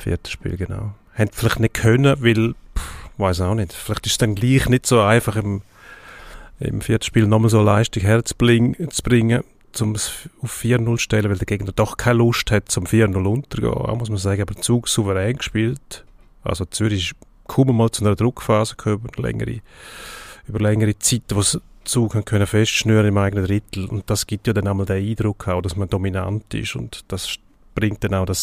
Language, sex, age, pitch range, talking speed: German, male, 30-49, 95-115 Hz, 195 wpm